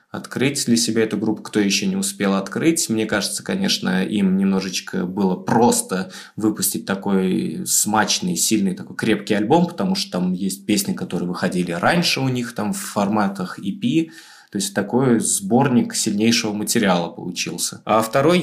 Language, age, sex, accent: Russian, 20-39, male, native